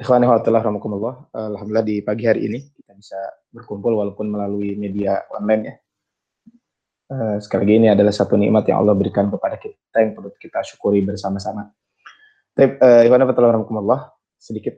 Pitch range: 100-120 Hz